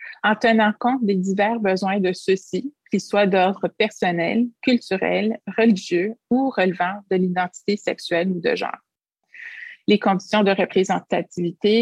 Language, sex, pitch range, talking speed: French, female, 185-220 Hz, 130 wpm